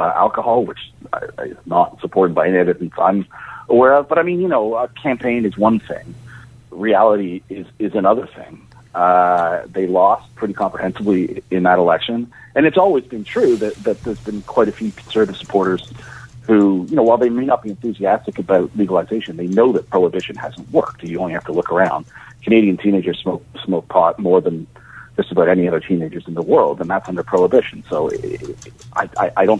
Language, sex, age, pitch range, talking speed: English, male, 40-59, 95-125 Hz, 190 wpm